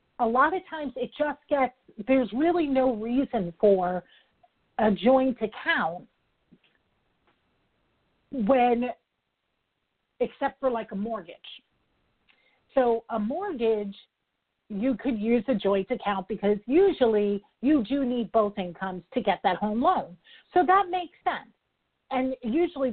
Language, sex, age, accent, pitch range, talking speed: English, female, 40-59, American, 220-275 Hz, 130 wpm